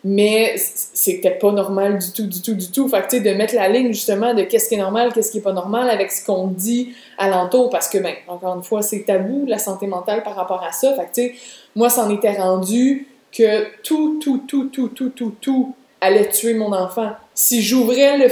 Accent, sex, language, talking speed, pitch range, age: Canadian, female, French, 240 wpm, 200-240 Hz, 20-39